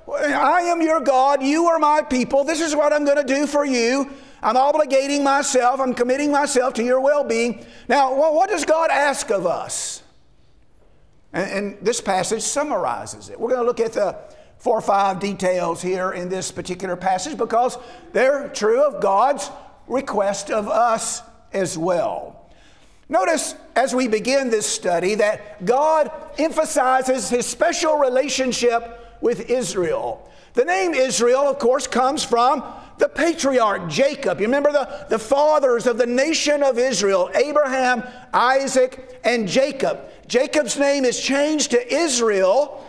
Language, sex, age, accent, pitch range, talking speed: English, male, 50-69, American, 230-280 Hz, 155 wpm